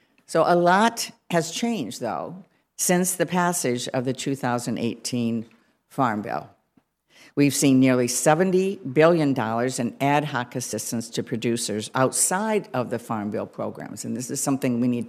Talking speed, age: 145 wpm, 50-69